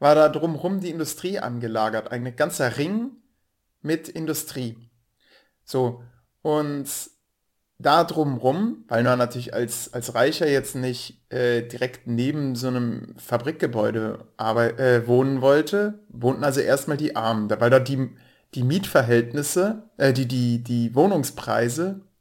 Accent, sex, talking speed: German, male, 130 wpm